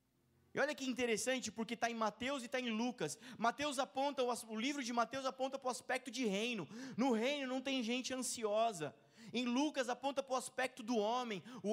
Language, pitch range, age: Portuguese, 185-245 Hz, 20-39